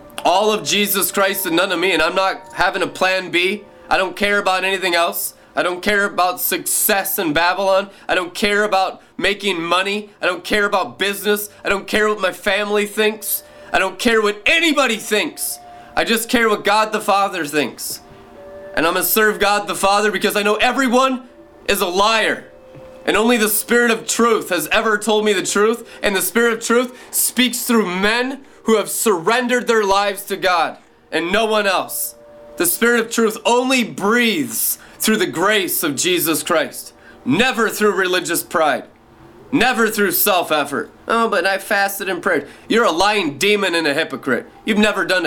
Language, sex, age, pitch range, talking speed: English, male, 20-39, 180-220 Hz, 185 wpm